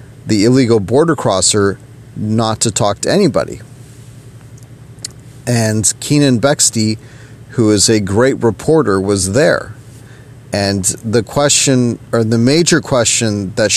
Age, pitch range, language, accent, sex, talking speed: 40-59, 115-130 Hz, English, American, male, 120 wpm